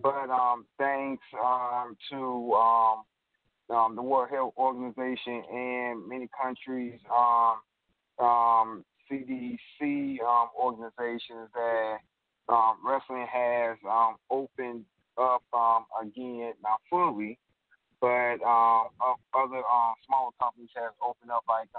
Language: English